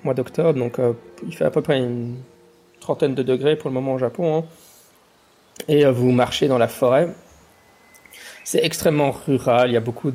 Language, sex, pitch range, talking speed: French, male, 115-140 Hz, 190 wpm